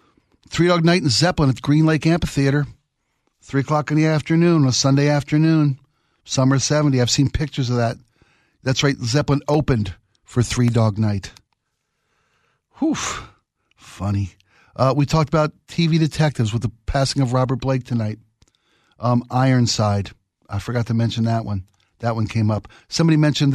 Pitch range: 115-140 Hz